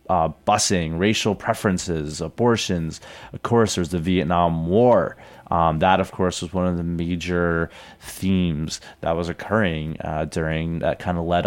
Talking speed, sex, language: 155 wpm, male, English